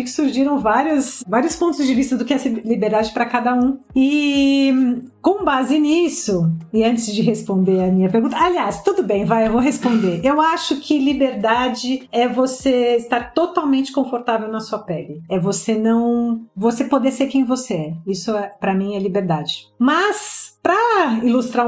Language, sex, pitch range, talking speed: Portuguese, female, 210-270 Hz, 170 wpm